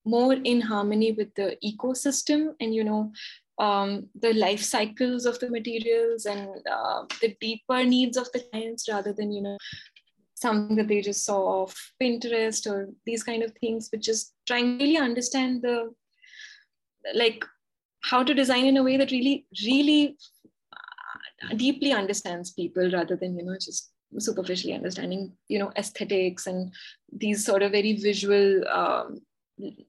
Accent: Indian